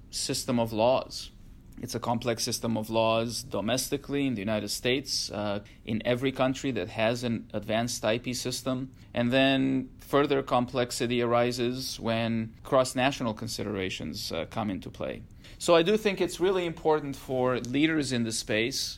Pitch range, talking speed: 110-130 Hz, 150 wpm